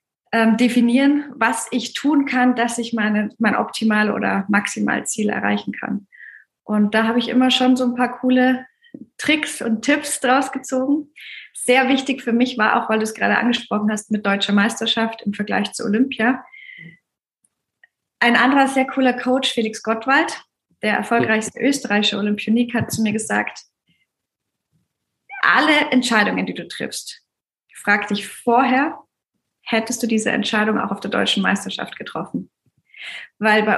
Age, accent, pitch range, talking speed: 20-39, German, 210-255 Hz, 145 wpm